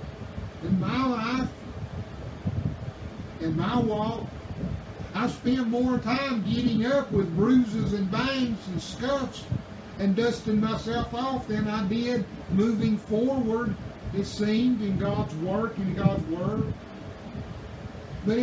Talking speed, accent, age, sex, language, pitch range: 115 wpm, American, 60-79, male, English, 200-255 Hz